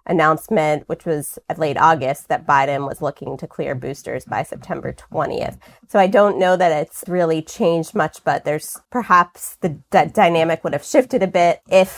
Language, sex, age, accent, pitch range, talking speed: English, female, 20-39, American, 160-195 Hz, 185 wpm